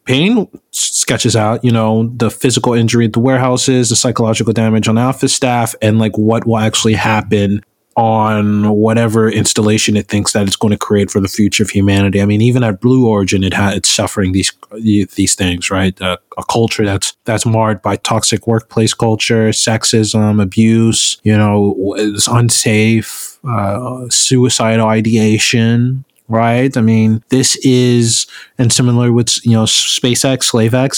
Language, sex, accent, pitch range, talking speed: English, male, American, 110-125 Hz, 160 wpm